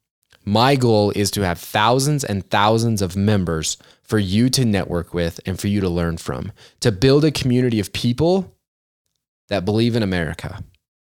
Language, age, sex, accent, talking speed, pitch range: English, 20-39, male, American, 165 wpm, 100-130 Hz